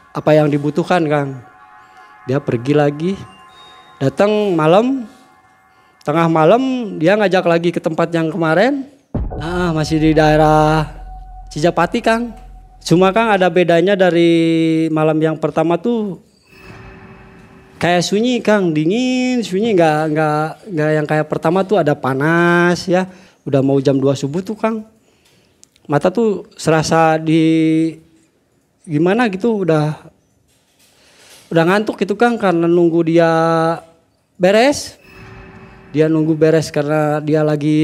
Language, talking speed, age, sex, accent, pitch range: Indonesian, 120 wpm, 20-39, male, native, 150-195 Hz